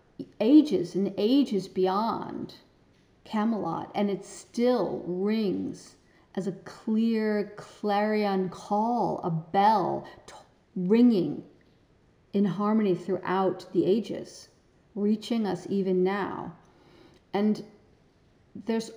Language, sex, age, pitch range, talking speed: English, female, 40-59, 180-210 Hz, 90 wpm